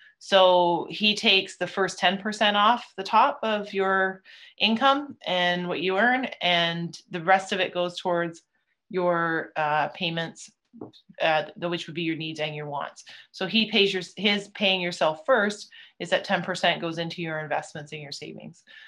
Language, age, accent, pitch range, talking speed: English, 30-49, American, 165-200 Hz, 170 wpm